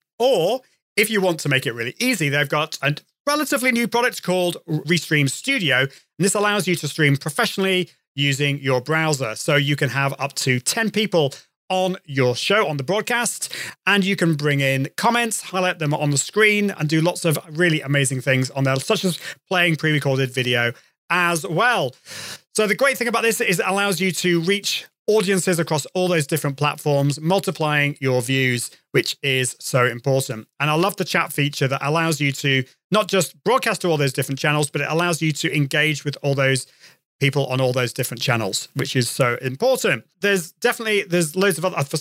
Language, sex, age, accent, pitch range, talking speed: English, male, 30-49, British, 135-190 Hz, 195 wpm